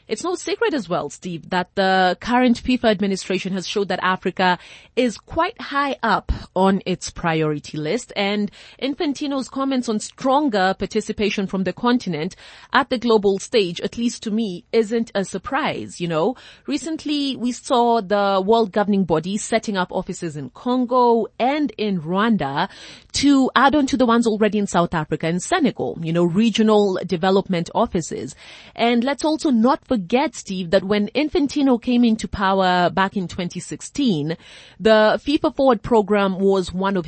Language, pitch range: English, 185-250 Hz